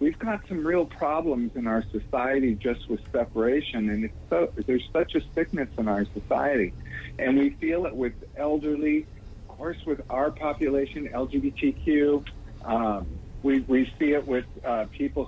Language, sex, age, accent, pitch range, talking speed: English, male, 50-69, American, 110-155 Hz, 160 wpm